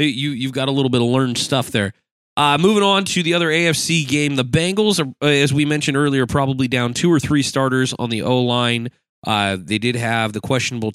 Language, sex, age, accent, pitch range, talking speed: English, male, 30-49, American, 105-130 Hz, 205 wpm